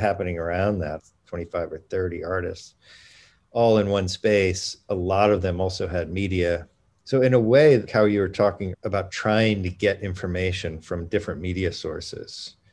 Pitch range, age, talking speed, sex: 90-105 Hz, 40-59, 165 wpm, male